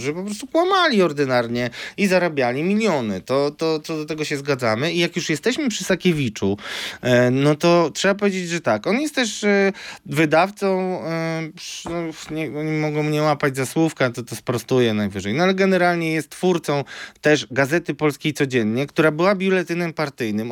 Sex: male